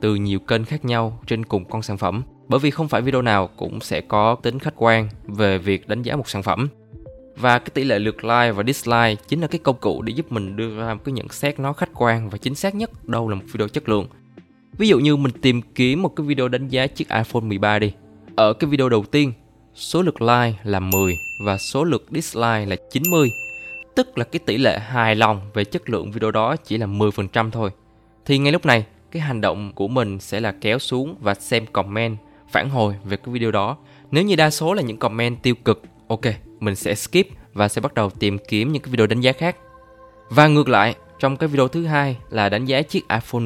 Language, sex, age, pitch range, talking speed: Vietnamese, male, 20-39, 110-140 Hz, 235 wpm